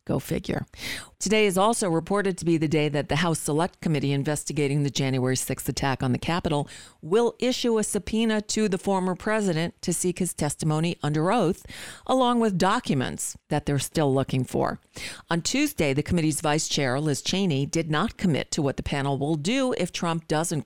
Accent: American